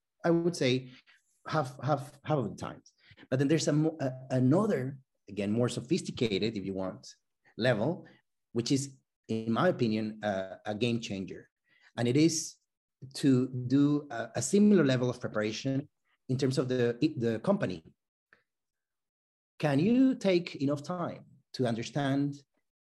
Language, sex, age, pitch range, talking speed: English, male, 30-49, 115-155 Hz, 145 wpm